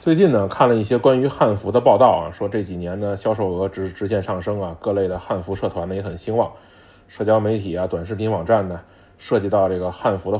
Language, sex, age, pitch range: Chinese, male, 20-39, 95-125 Hz